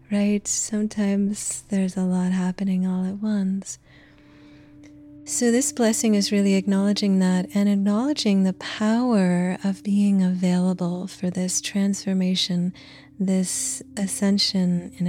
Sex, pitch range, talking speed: female, 130-200 Hz, 115 wpm